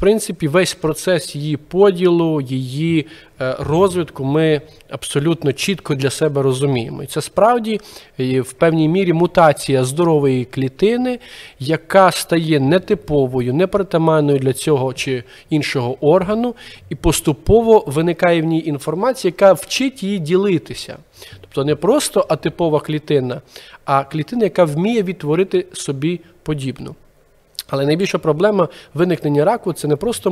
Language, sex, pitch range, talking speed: Ukrainian, male, 145-190 Hz, 125 wpm